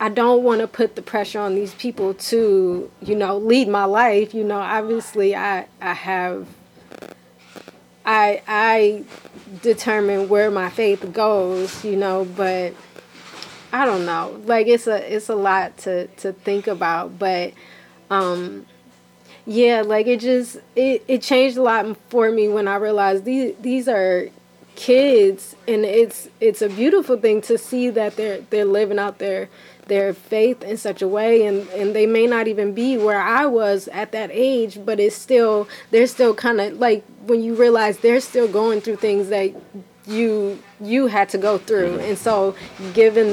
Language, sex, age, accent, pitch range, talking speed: English, female, 20-39, American, 200-235 Hz, 170 wpm